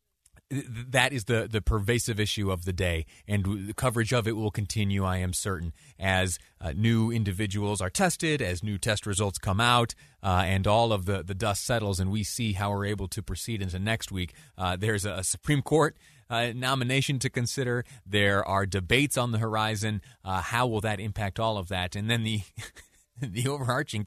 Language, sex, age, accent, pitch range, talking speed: English, male, 30-49, American, 100-135 Hz, 195 wpm